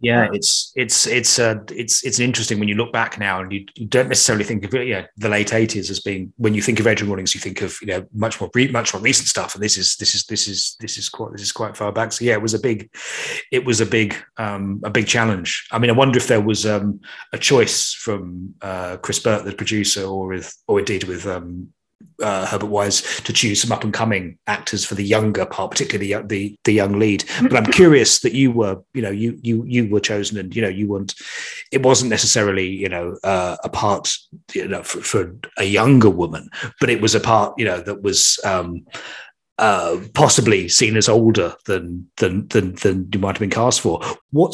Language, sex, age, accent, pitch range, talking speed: English, male, 30-49, British, 100-115 Hz, 240 wpm